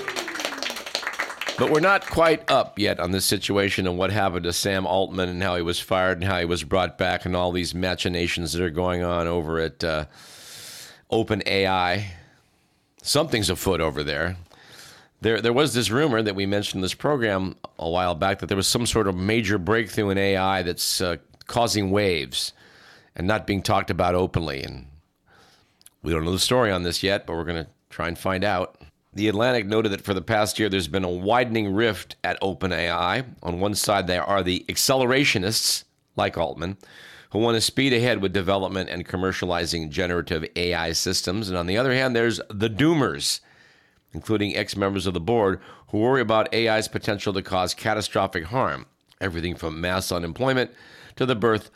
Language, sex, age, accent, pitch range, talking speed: English, male, 50-69, American, 90-110 Hz, 185 wpm